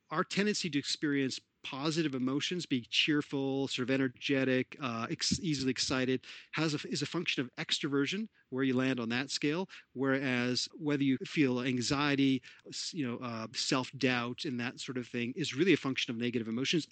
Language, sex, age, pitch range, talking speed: English, male, 40-59, 125-150 Hz, 170 wpm